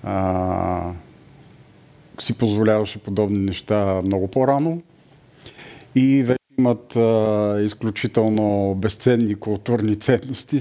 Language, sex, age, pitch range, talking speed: Bulgarian, male, 50-69, 105-130 Hz, 80 wpm